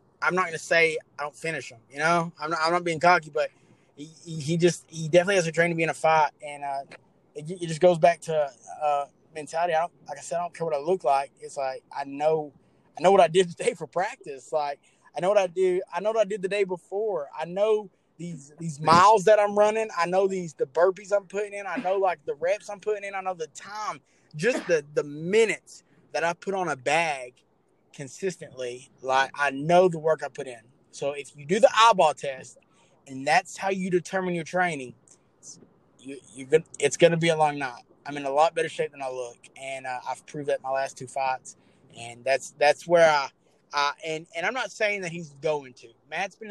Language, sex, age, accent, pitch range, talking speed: English, male, 20-39, American, 145-185 Hz, 240 wpm